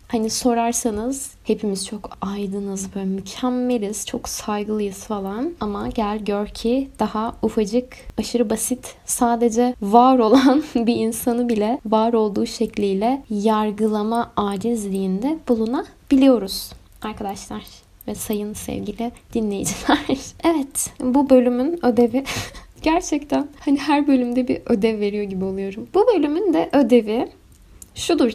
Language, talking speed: Turkish, 110 wpm